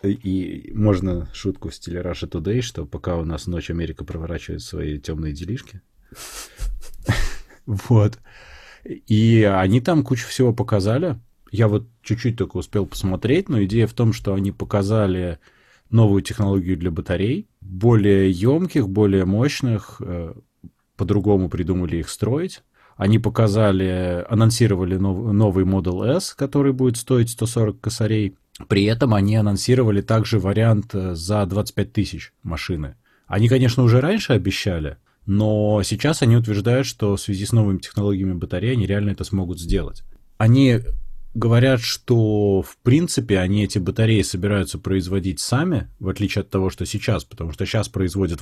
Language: Russian